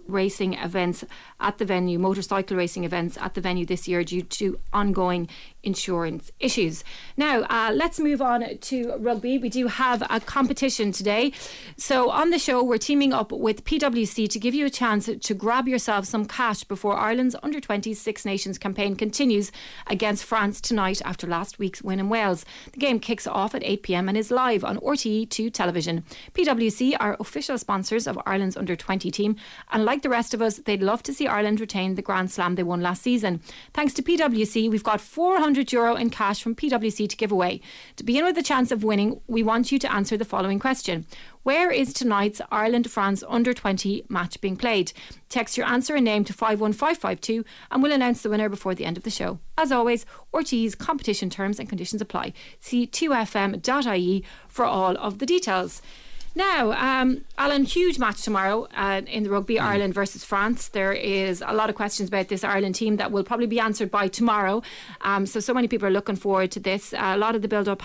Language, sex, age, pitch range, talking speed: English, female, 30-49, 195-245 Hz, 195 wpm